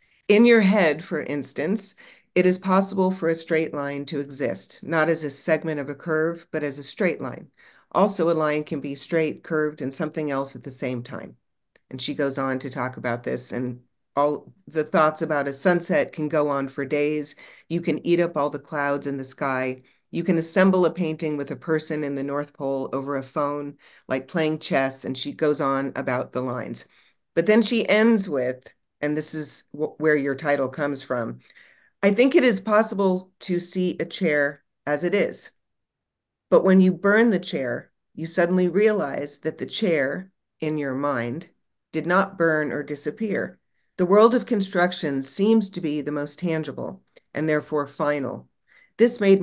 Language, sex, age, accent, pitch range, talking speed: English, female, 50-69, American, 140-180 Hz, 190 wpm